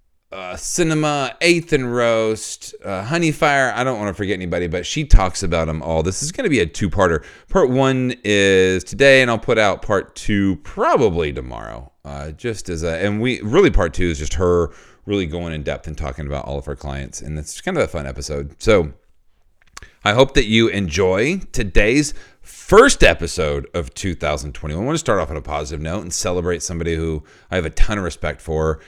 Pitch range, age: 80-115 Hz, 40-59